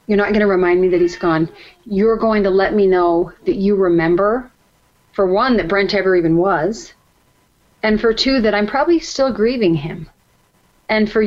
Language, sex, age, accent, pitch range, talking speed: English, female, 30-49, American, 195-250 Hz, 190 wpm